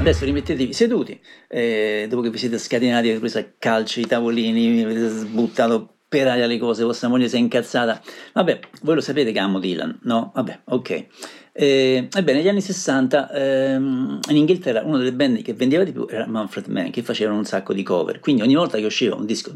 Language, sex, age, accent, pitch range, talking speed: Italian, male, 50-69, native, 115-190 Hz, 205 wpm